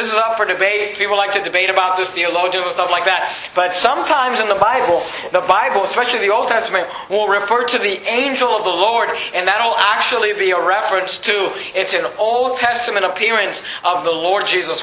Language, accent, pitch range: English, American, 185-235 Hz